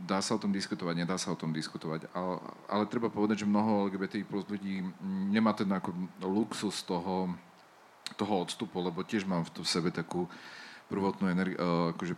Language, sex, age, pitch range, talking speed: Slovak, male, 40-59, 90-110 Hz, 180 wpm